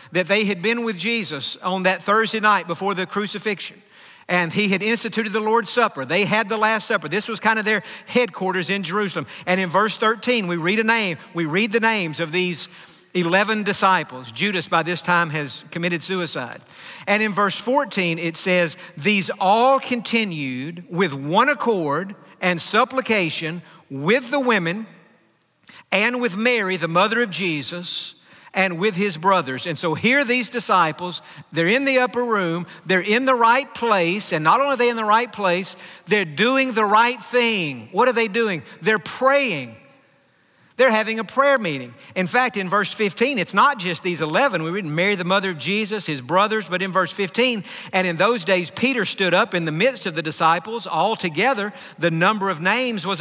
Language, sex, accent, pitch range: English, male, American, 180-230 Hz